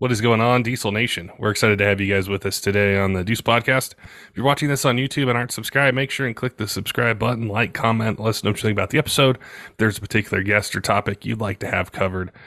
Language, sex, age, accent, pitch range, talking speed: English, male, 20-39, American, 100-115 Hz, 270 wpm